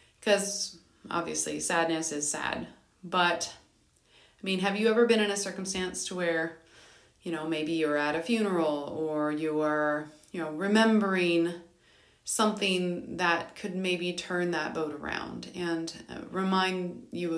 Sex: female